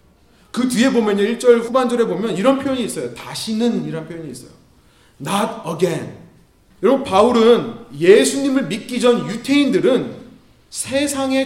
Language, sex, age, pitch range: Korean, male, 30-49, 195-270 Hz